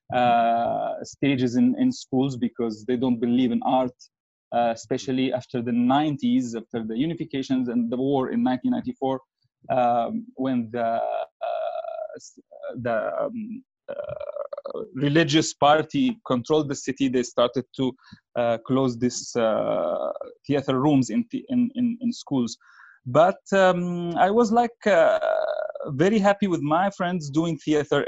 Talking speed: 135 wpm